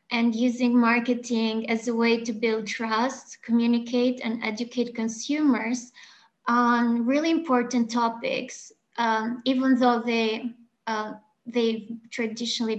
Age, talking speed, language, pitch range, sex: 20-39, 115 wpm, English, 225-250 Hz, female